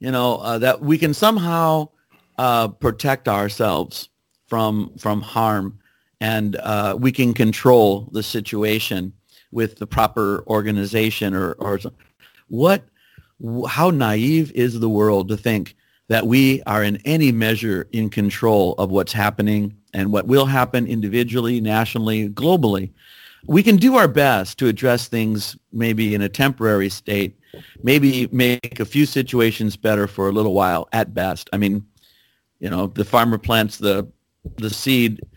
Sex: male